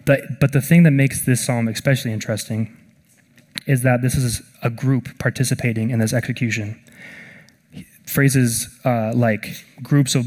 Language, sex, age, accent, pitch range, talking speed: English, male, 20-39, American, 115-135 Hz, 140 wpm